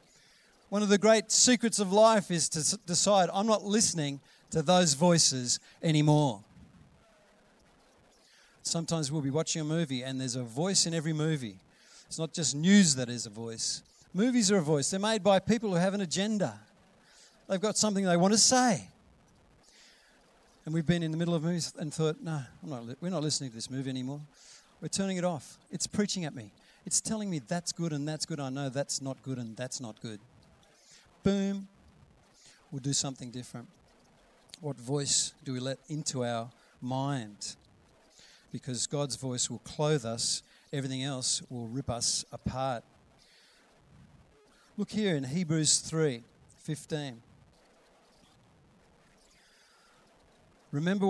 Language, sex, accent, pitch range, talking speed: English, male, Australian, 130-180 Hz, 155 wpm